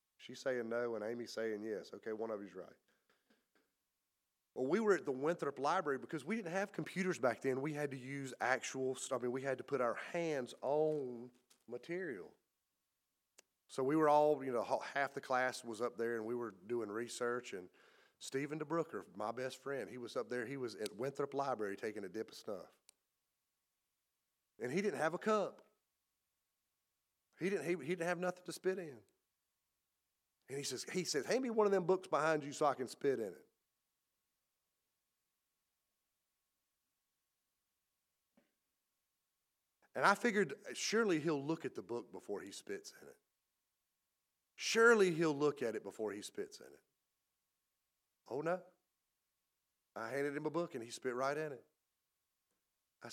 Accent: American